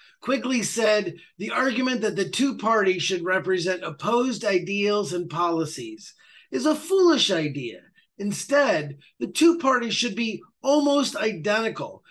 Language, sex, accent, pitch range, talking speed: English, male, American, 175-240 Hz, 130 wpm